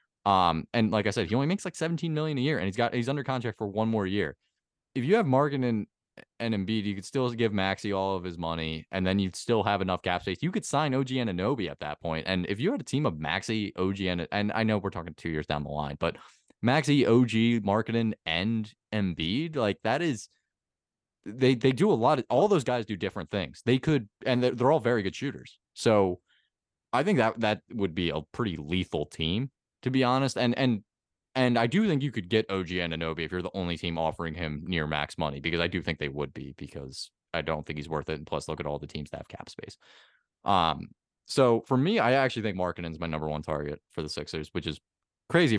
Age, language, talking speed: 20-39, English, 245 wpm